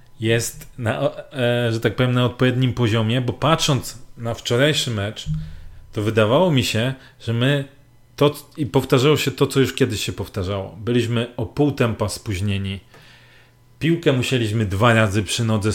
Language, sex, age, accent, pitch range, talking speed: Polish, male, 40-59, native, 115-145 Hz, 150 wpm